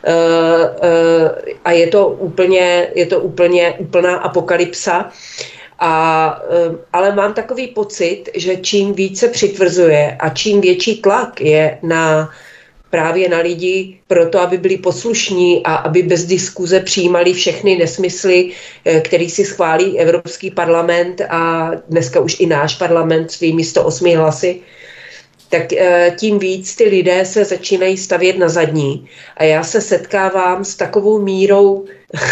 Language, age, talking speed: Czech, 40-59, 135 wpm